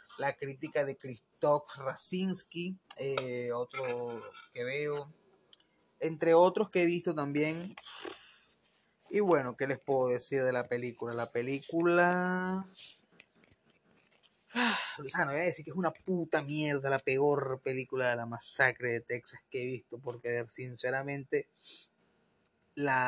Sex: male